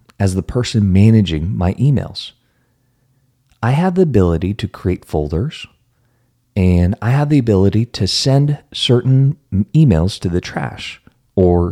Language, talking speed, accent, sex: English, 135 wpm, American, male